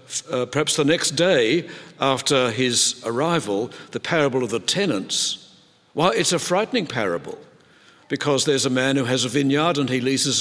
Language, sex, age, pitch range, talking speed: English, male, 60-79, 130-165 Hz, 180 wpm